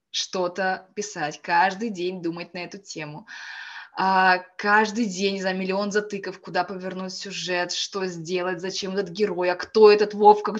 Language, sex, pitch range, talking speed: Russian, female, 190-255 Hz, 145 wpm